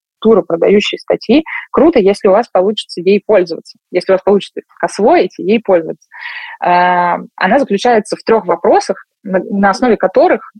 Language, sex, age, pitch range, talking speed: Russian, female, 20-39, 185-230 Hz, 140 wpm